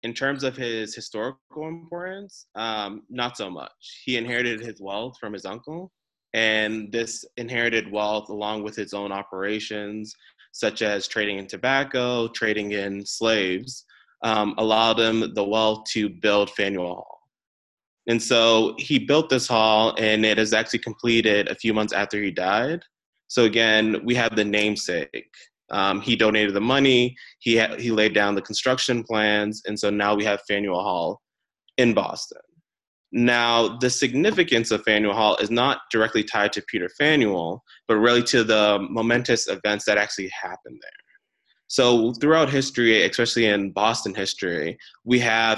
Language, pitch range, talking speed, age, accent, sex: English, 105-120 Hz, 160 wpm, 20-39, American, male